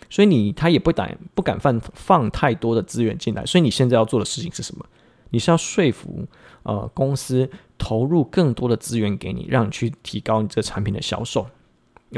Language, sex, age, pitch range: Chinese, male, 20-39, 110-140 Hz